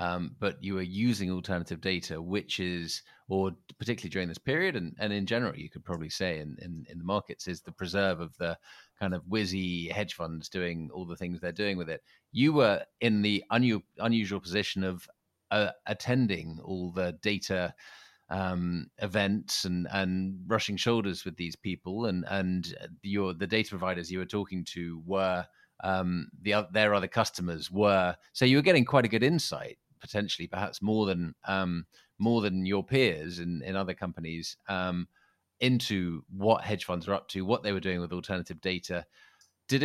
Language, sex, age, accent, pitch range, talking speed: English, male, 30-49, British, 90-105 Hz, 175 wpm